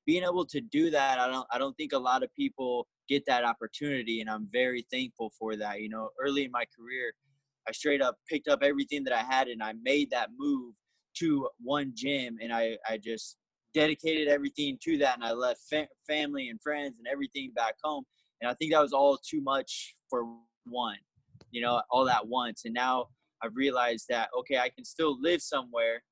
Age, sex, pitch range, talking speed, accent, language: 20-39, male, 120-150 Hz, 210 wpm, American, English